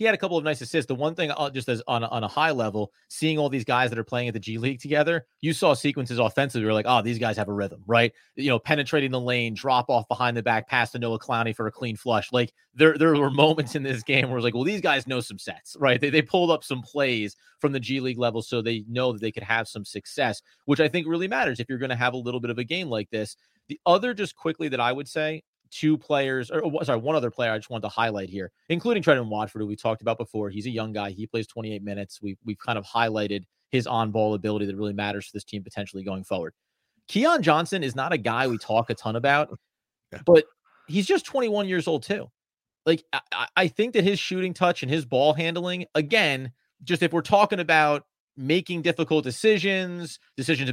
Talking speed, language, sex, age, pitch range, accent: 250 wpm, English, male, 30-49, 115-160 Hz, American